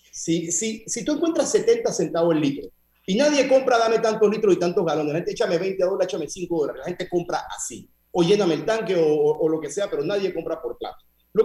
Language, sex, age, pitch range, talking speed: Spanish, male, 40-59, 155-245 Hz, 240 wpm